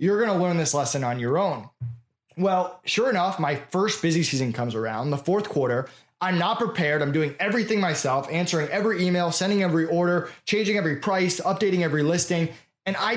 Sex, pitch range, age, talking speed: male, 150-195 Hz, 20-39, 190 wpm